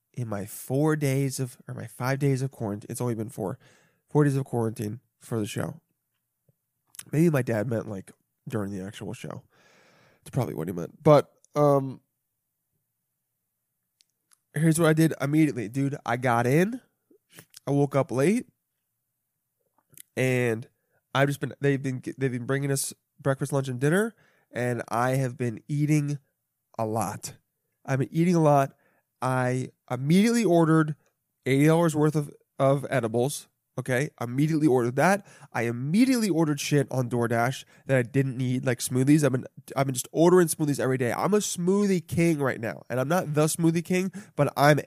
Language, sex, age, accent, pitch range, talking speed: English, male, 20-39, American, 125-155 Hz, 165 wpm